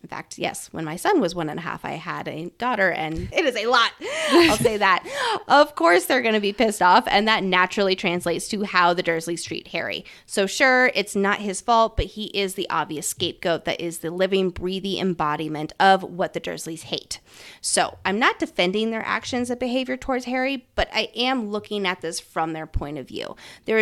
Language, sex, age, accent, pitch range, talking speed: English, female, 20-39, American, 175-220 Hz, 215 wpm